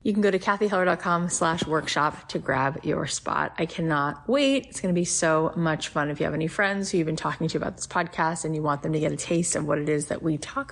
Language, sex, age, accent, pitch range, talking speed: English, female, 30-49, American, 155-185 Hz, 275 wpm